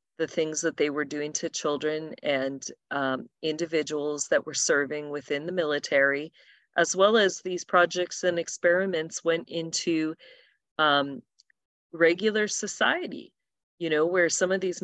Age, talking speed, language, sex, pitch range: 40-59, 140 wpm, English, female, 150-185 Hz